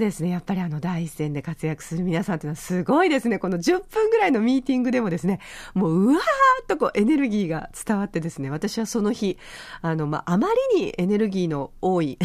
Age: 40-59